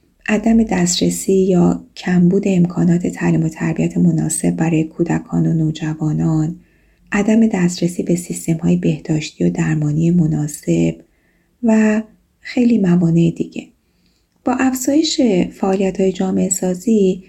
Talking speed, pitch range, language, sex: 100 wpm, 160-205 Hz, Persian, female